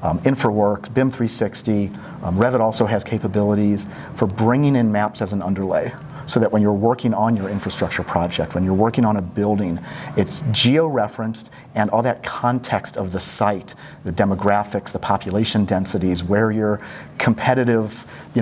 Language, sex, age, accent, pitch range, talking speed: English, male, 40-59, American, 105-125 Hz, 160 wpm